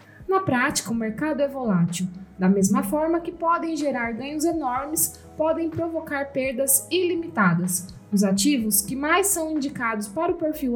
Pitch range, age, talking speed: 210-315 Hz, 20-39, 150 wpm